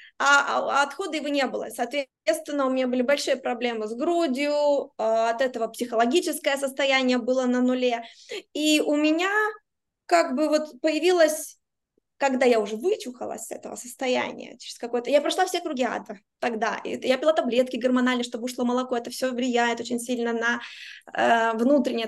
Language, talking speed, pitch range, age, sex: Russian, 150 wpm, 240-290 Hz, 20-39, female